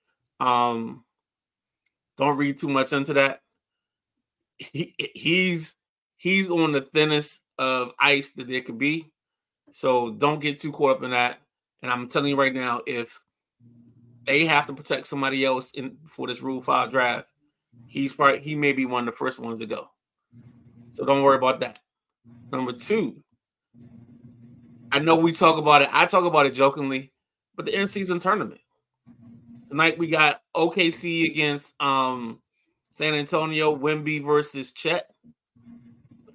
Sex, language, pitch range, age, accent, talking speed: male, English, 130-165 Hz, 20-39, American, 155 wpm